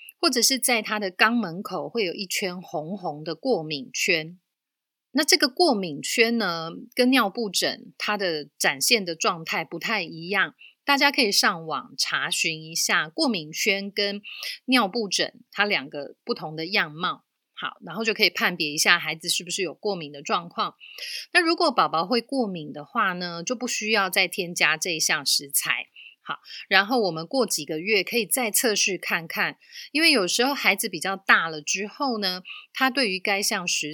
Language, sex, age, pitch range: Chinese, female, 30-49, 170-240 Hz